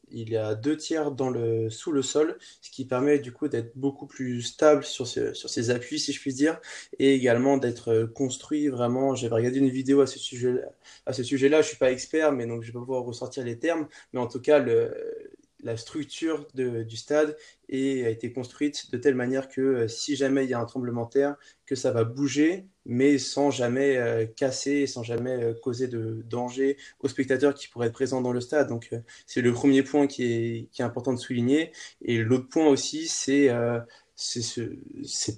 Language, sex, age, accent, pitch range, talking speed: French, male, 20-39, French, 120-140 Hz, 220 wpm